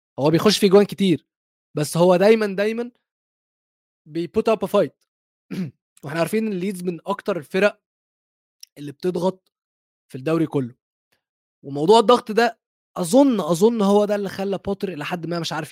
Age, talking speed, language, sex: 20-39, 145 wpm, Arabic, male